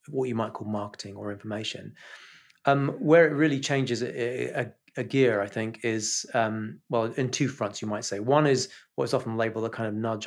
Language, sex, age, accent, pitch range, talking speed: English, male, 30-49, British, 105-125 Hz, 215 wpm